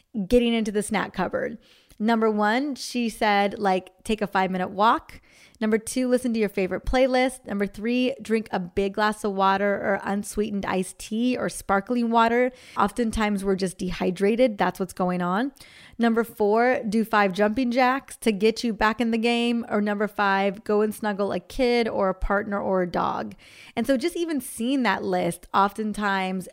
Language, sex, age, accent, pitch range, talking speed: English, female, 20-39, American, 195-235 Hz, 180 wpm